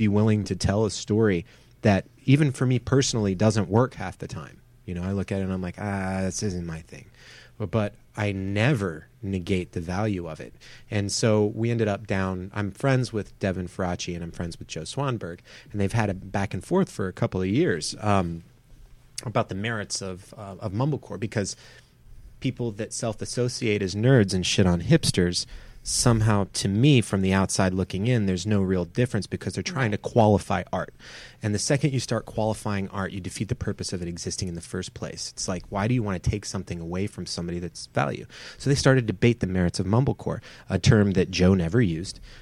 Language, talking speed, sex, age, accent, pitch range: English, 215 wpm, male, 30-49, American, 95-115 Hz